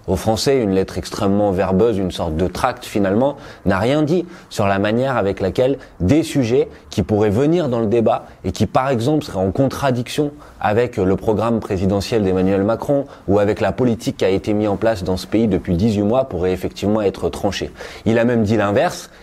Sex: male